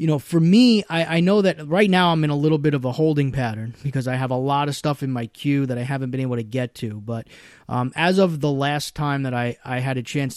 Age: 30-49